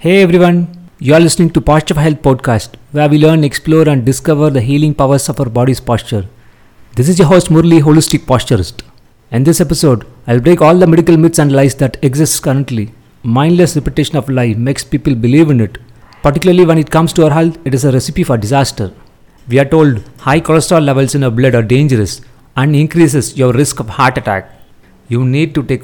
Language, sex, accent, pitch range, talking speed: English, male, Indian, 120-155 Hz, 205 wpm